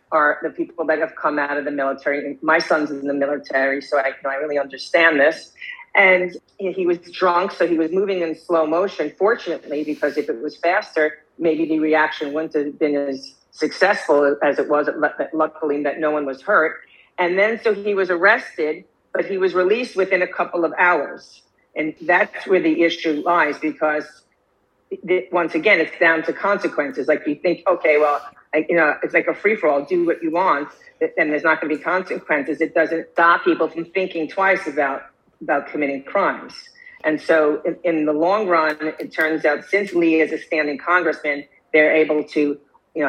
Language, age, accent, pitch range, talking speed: English, 40-59, American, 150-175 Hz, 195 wpm